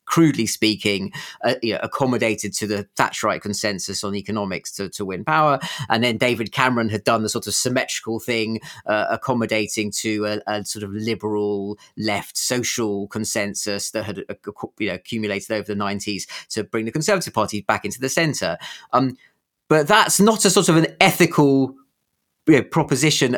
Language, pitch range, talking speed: English, 105-140 Hz, 160 wpm